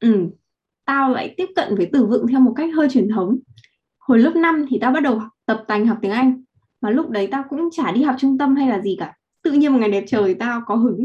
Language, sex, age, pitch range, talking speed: Vietnamese, female, 10-29, 205-270 Hz, 265 wpm